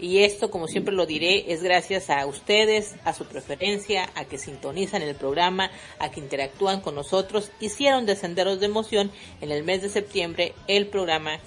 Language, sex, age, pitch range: Spanish, female, 40-59, 160-220 Hz